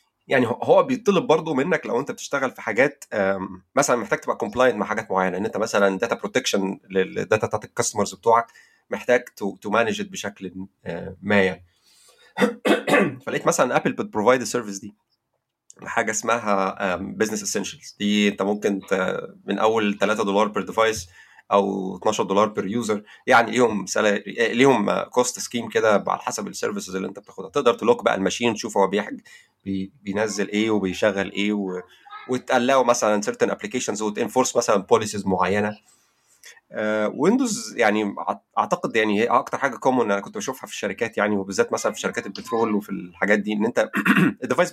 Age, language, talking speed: 30-49, Arabic, 150 wpm